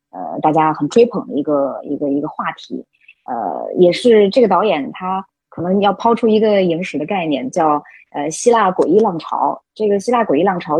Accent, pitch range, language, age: native, 160-215 Hz, Chinese, 20-39